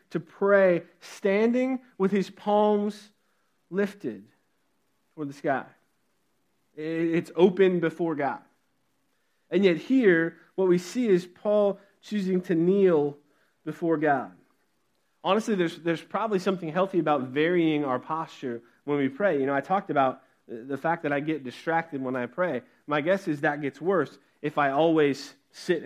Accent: American